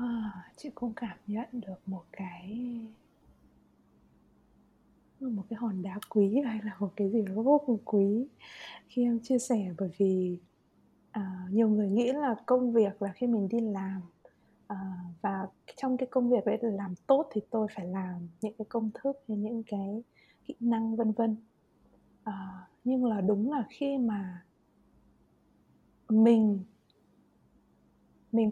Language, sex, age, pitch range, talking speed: Vietnamese, female, 20-39, 200-245 Hz, 155 wpm